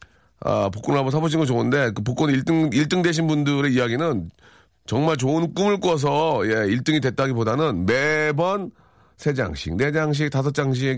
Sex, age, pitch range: male, 40-59, 105-150 Hz